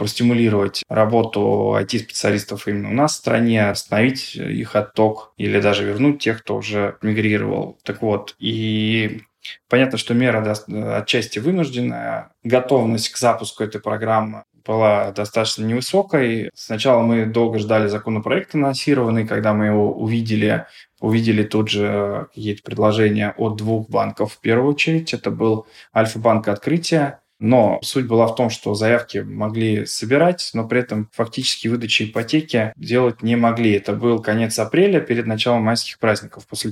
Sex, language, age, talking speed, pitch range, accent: male, Russian, 20-39, 140 wpm, 105-125 Hz, native